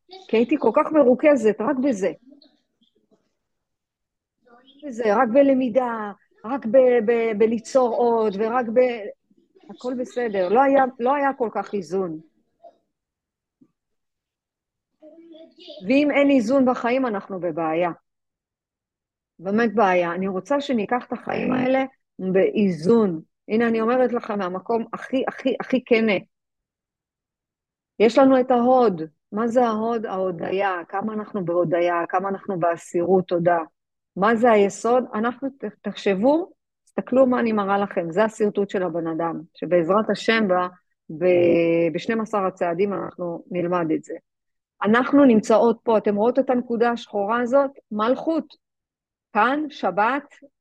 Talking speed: 120 wpm